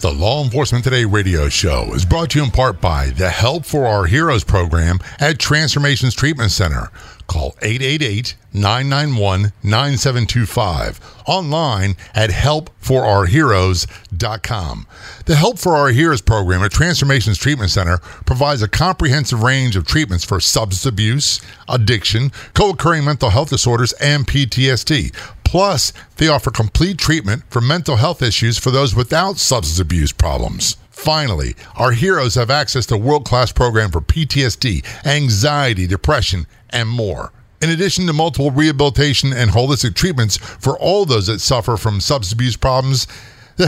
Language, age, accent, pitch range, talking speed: English, 50-69, American, 100-145 Hz, 140 wpm